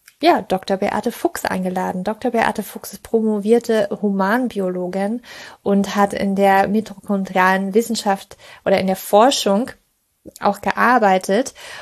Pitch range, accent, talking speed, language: 195-230 Hz, German, 115 wpm, German